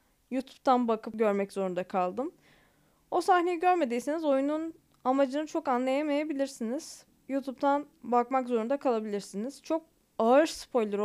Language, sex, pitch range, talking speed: Turkish, female, 225-285 Hz, 105 wpm